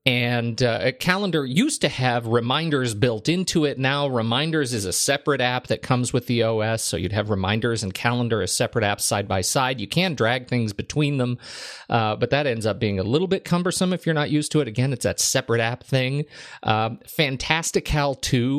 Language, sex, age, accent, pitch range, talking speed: English, male, 40-59, American, 115-150 Hz, 205 wpm